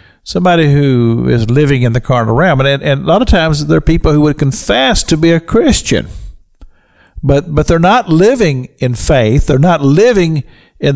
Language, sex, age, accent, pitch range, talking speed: English, male, 50-69, American, 115-155 Hz, 195 wpm